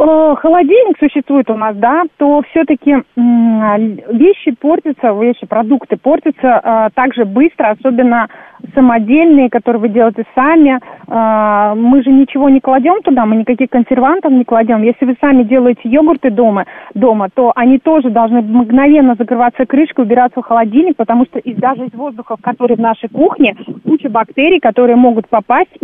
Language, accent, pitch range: Russian, native, 230-280 Hz